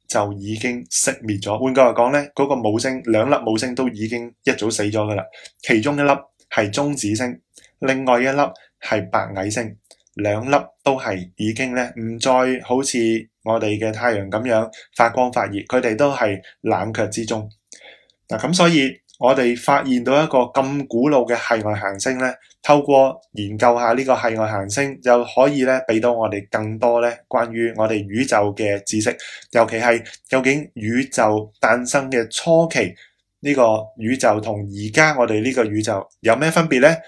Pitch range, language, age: 110-130 Hz, Chinese, 20-39